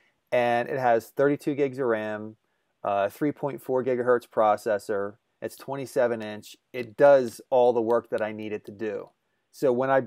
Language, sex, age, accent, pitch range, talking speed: English, male, 30-49, American, 110-140 Hz, 165 wpm